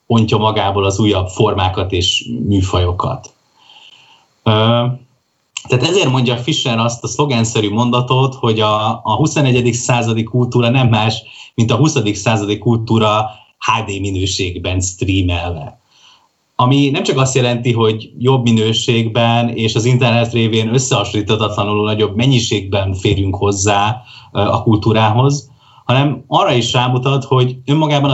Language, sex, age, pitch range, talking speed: Hungarian, male, 30-49, 100-125 Hz, 115 wpm